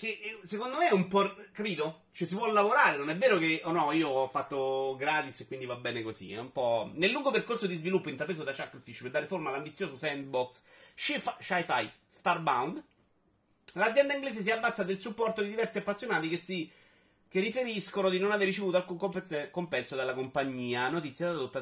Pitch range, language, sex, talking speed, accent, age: 145-205 Hz, Italian, male, 195 wpm, native, 30-49